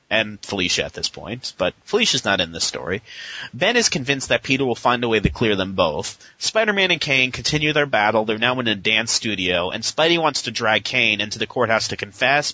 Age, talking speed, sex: 30-49, 225 wpm, male